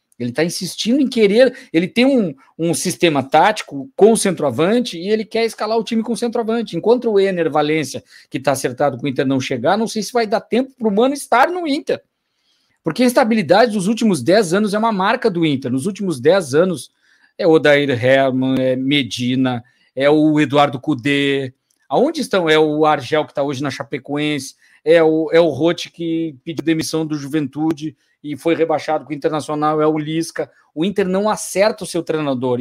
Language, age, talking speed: Portuguese, 50-69, 200 wpm